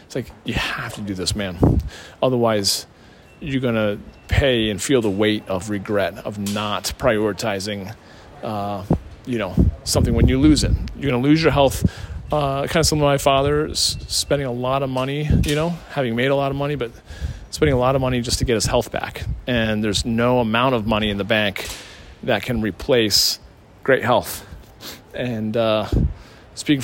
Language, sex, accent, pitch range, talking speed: English, male, American, 110-140 Hz, 190 wpm